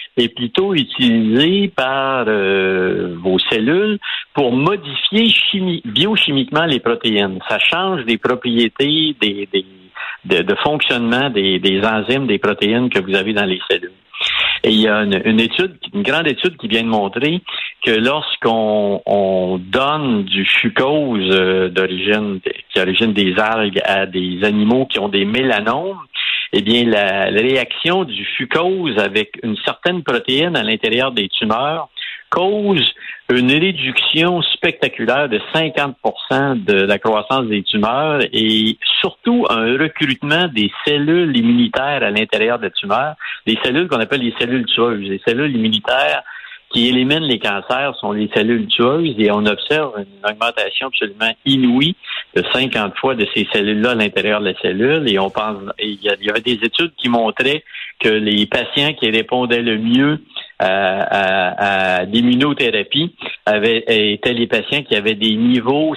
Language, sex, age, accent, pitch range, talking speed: French, male, 50-69, French, 105-145 Hz, 150 wpm